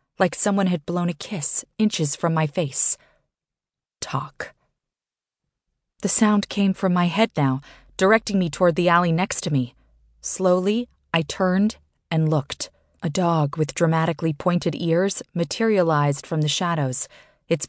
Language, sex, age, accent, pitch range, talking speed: English, female, 30-49, American, 155-190 Hz, 145 wpm